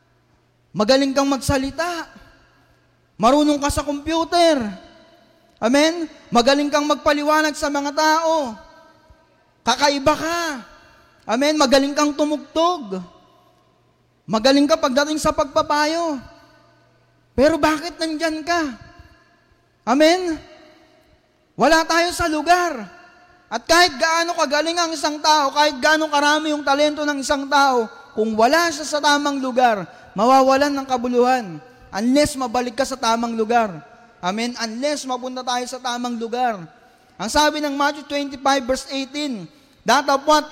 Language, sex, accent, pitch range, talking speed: Filipino, male, native, 270-310 Hz, 115 wpm